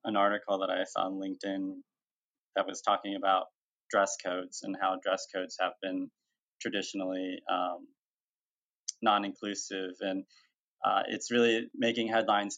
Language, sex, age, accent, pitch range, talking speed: English, male, 20-39, American, 95-110 Hz, 140 wpm